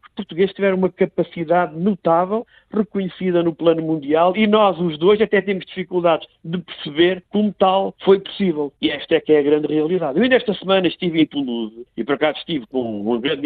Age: 50-69